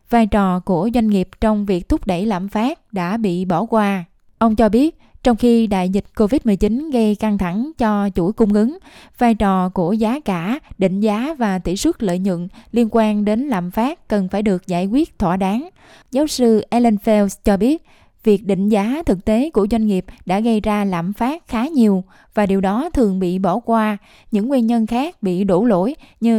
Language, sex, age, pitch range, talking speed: Vietnamese, female, 10-29, 195-240 Hz, 205 wpm